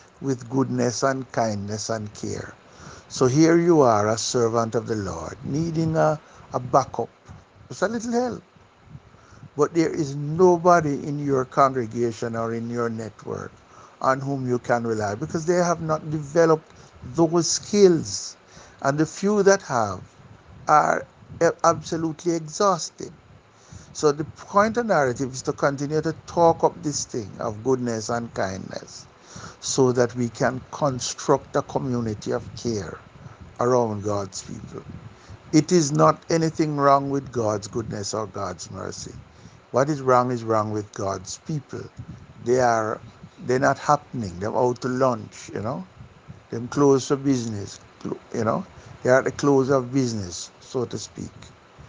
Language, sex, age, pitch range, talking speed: English, male, 60-79, 110-150 Hz, 150 wpm